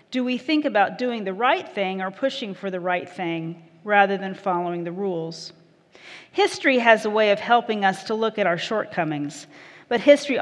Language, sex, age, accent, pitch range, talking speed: English, female, 40-59, American, 195-250 Hz, 190 wpm